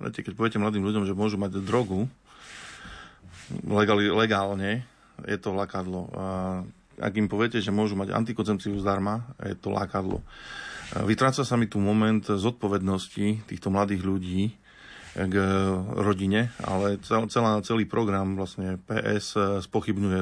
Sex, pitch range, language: male, 95-110 Hz, Slovak